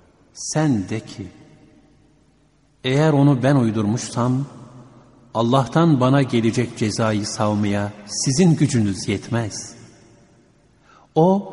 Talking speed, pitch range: 85 wpm, 110-150 Hz